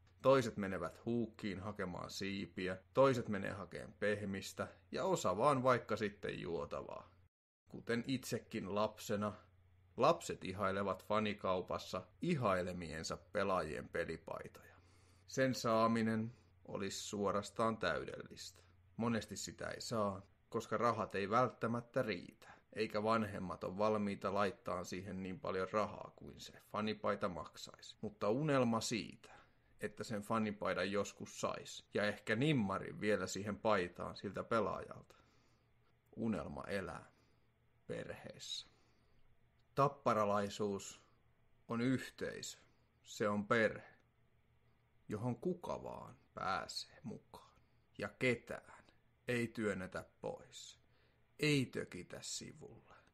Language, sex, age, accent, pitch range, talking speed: Finnish, male, 30-49, native, 95-115 Hz, 100 wpm